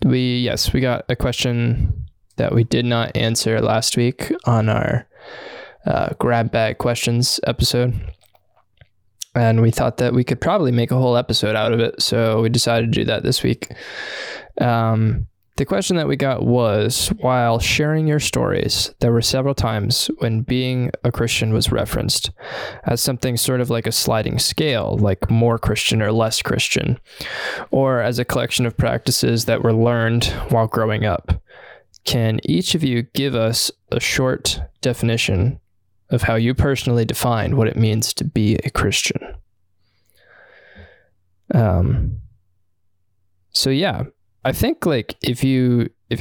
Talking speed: 155 wpm